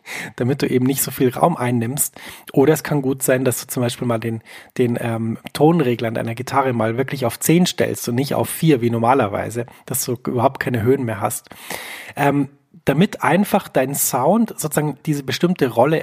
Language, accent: German, German